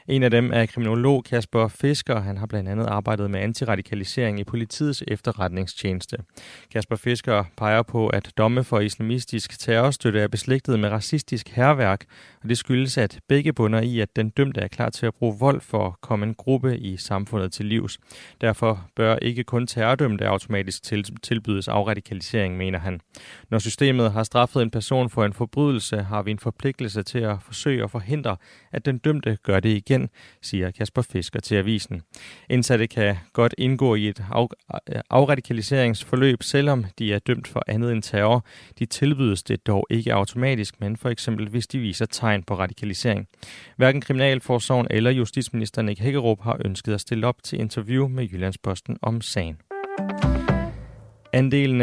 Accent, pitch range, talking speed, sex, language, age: native, 105-125 Hz, 165 wpm, male, Danish, 30-49